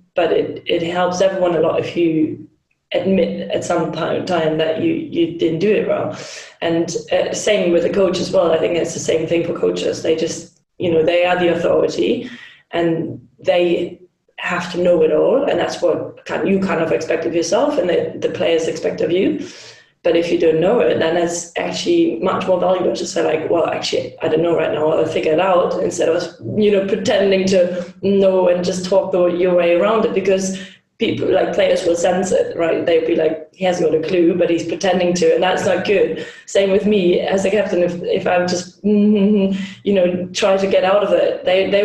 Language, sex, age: English, female, 20-39